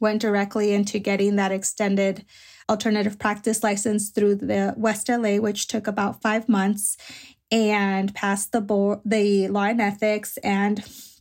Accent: American